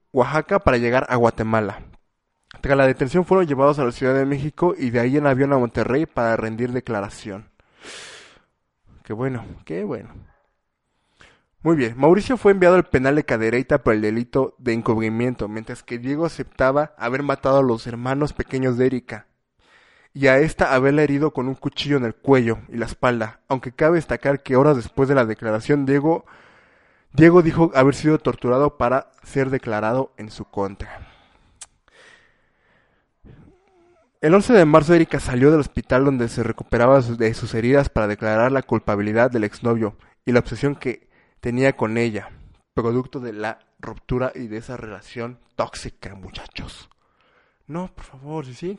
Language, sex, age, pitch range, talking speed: Spanish, male, 20-39, 115-145 Hz, 160 wpm